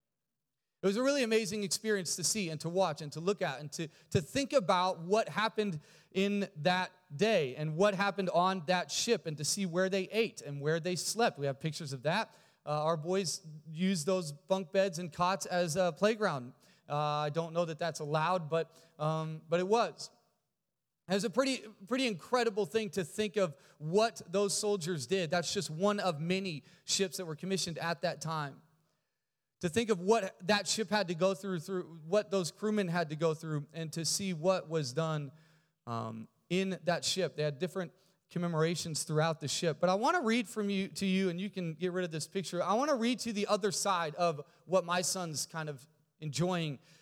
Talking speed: 210 wpm